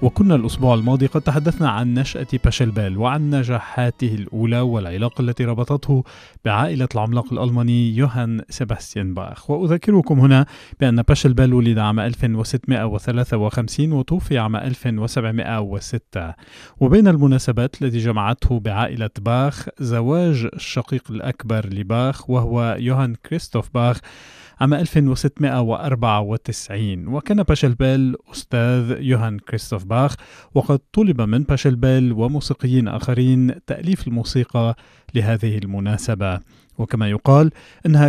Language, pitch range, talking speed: Arabic, 115-135 Hz, 105 wpm